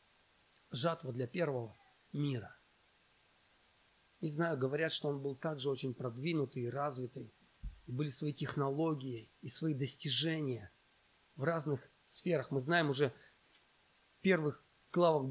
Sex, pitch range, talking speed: male, 145-180 Hz, 120 wpm